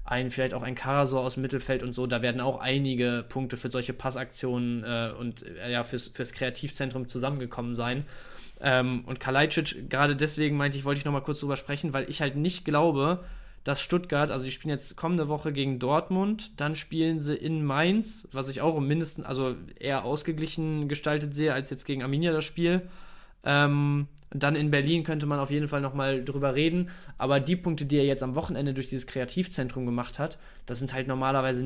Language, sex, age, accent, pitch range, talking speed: German, male, 20-39, German, 130-150 Hz, 195 wpm